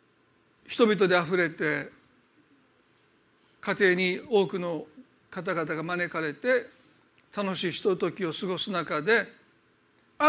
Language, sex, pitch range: Japanese, male, 185-260 Hz